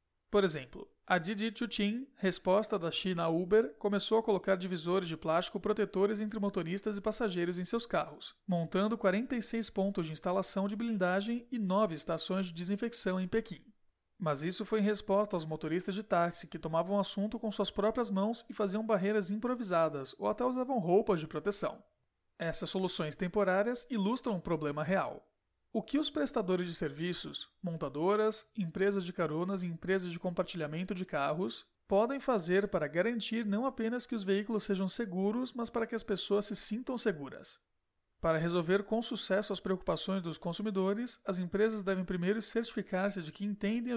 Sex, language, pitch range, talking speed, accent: male, Portuguese, 180-220 Hz, 170 wpm, Brazilian